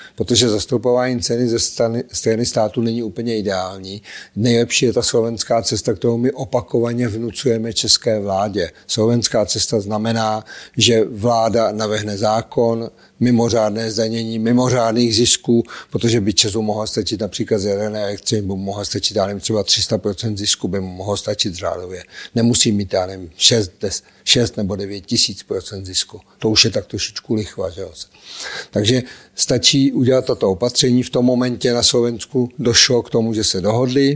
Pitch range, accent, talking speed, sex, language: 105-120 Hz, native, 150 wpm, male, Czech